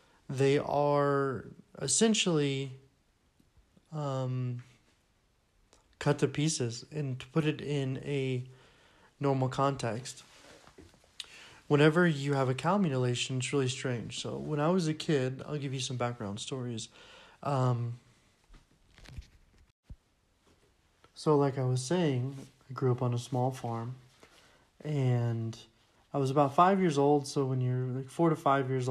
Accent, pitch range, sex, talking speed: American, 125-145 Hz, male, 130 wpm